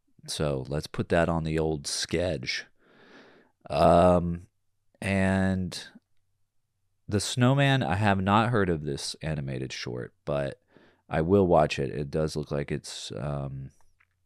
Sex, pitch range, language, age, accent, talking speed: male, 80-100 Hz, English, 30-49, American, 130 wpm